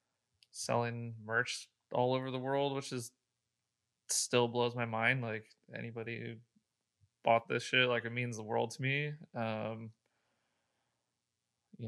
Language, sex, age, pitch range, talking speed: English, male, 20-39, 115-125 Hz, 135 wpm